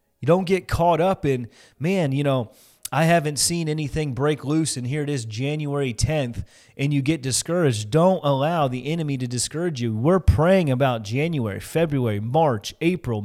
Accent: American